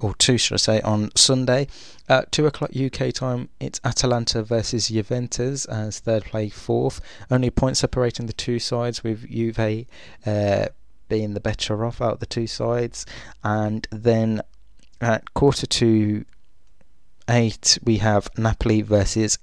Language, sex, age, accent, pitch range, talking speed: English, male, 20-39, British, 105-125 Hz, 150 wpm